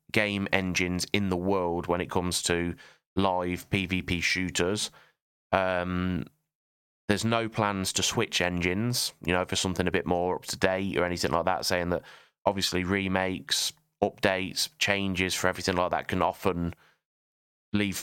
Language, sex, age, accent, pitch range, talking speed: English, male, 20-39, British, 90-100 Hz, 155 wpm